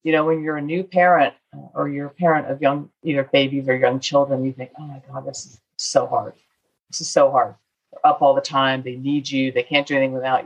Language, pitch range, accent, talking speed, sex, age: English, 145-215 Hz, American, 250 wpm, female, 40-59